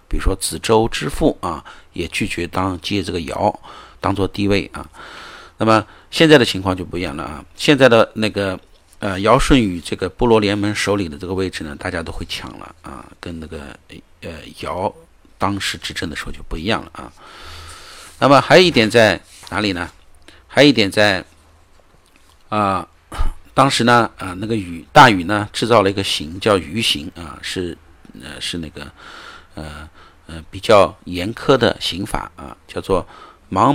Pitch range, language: 85-110 Hz, Chinese